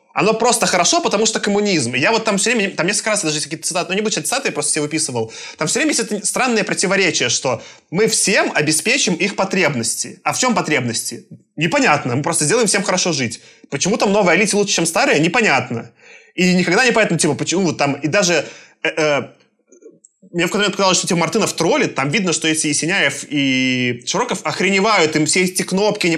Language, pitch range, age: Russian, 155-205 Hz, 20-39